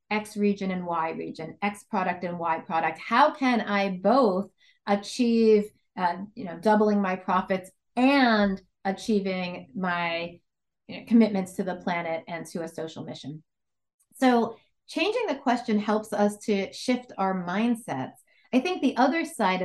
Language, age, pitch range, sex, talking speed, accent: English, 30-49, 185-235 Hz, female, 140 wpm, American